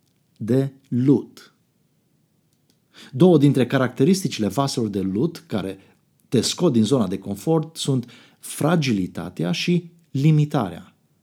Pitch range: 105-160 Hz